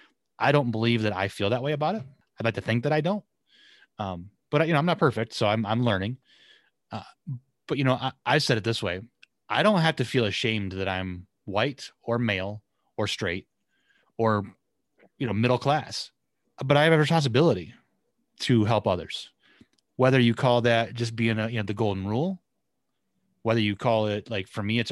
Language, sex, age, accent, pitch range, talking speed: English, male, 30-49, American, 105-125 Hz, 200 wpm